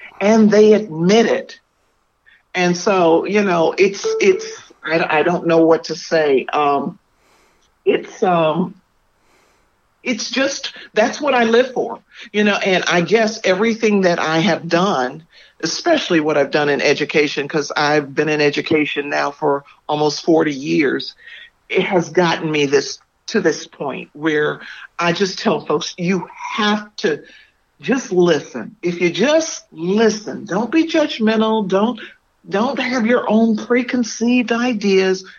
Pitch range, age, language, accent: 160-235 Hz, 50-69, English, American